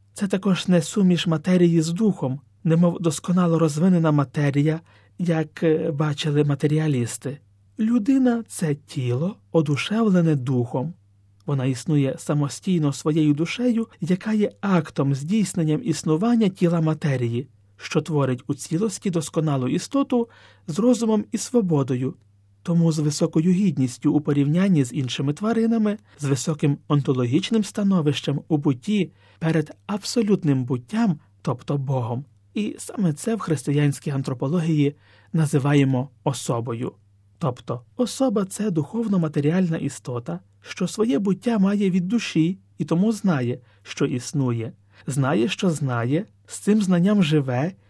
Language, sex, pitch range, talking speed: Ukrainian, male, 135-190 Hz, 115 wpm